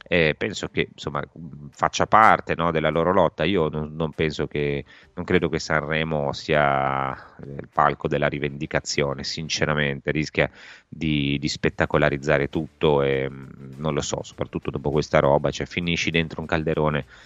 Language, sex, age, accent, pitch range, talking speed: Italian, male, 30-49, native, 75-85 Hz, 150 wpm